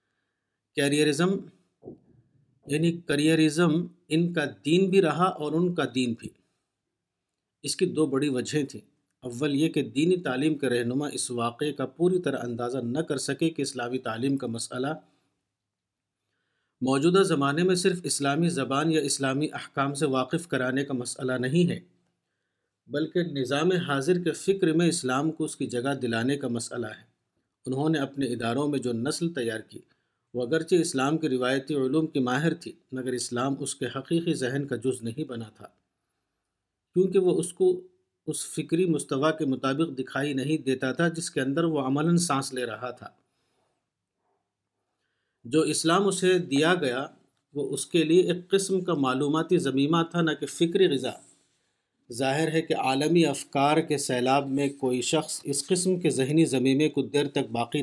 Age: 50-69